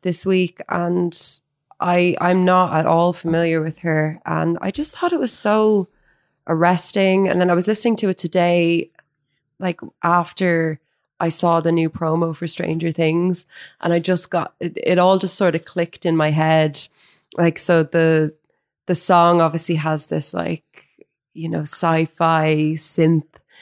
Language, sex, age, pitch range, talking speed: English, female, 20-39, 150-180 Hz, 165 wpm